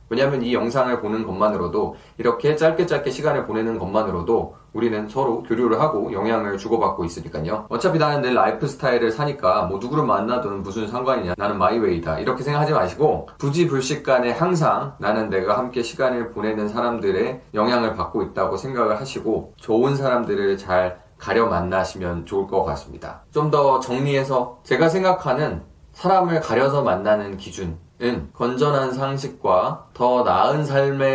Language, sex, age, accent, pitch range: Korean, male, 20-39, native, 95-140 Hz